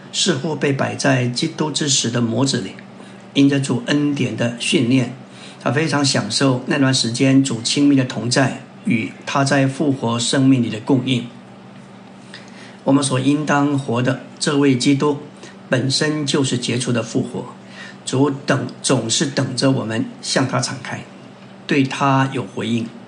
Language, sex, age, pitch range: Chinese, male, 60-79, 120-140 Hz